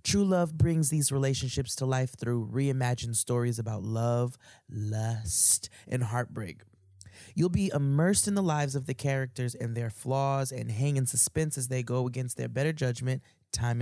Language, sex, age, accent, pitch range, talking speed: English, male, 20-39, American, 120-150 Hz, 170 wpm